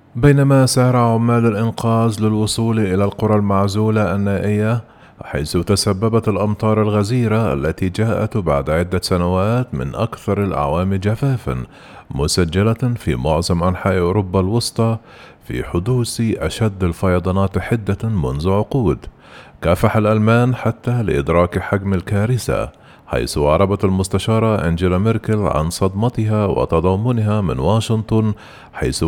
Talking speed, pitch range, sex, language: 105 wpm, 85-110 Hz, male, Arabic